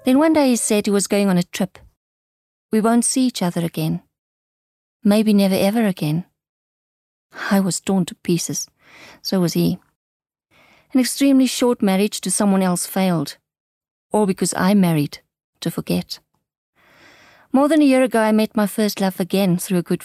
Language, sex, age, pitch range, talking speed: English, female, 30-49, 185-230 Hz, 170 wpm